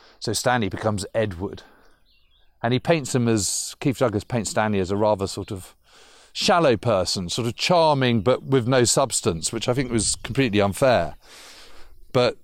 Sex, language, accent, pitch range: male, English, British, 105-150 Hz